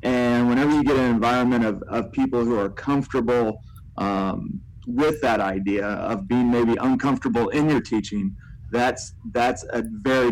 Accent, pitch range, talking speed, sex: American, 105-125 Hz, 155 wpm, male